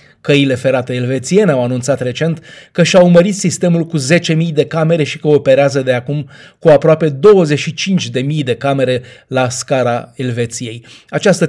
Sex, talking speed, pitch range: male, 145 wpm, 130-165 Hz